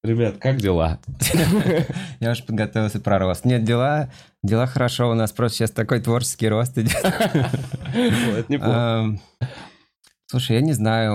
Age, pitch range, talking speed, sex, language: 20-39, 95-115 Hz, 125 wpm, male, Russian